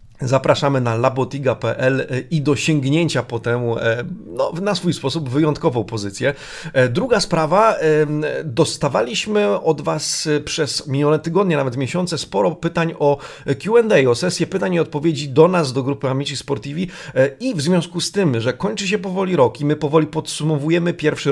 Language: Polish